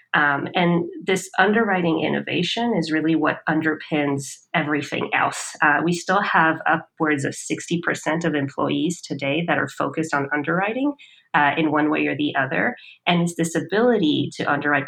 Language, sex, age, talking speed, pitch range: English, female, 30-49, 155 wpm, 145-165 Hz